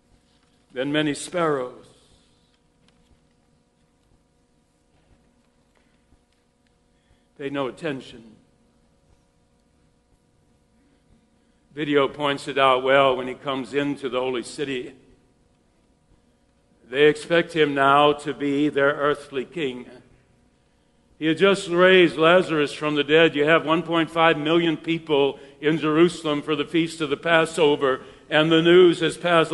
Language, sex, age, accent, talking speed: English, male, 60-79, American, 110 wpm